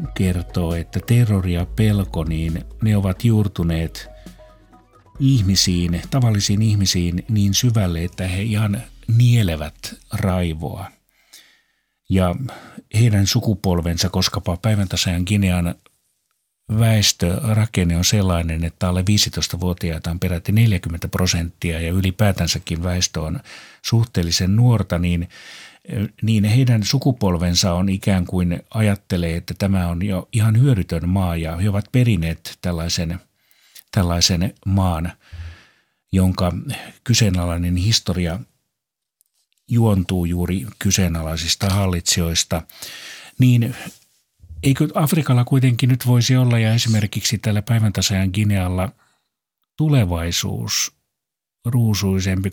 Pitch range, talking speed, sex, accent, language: 90-110 Hz, 95 wpm, male, native, Finnish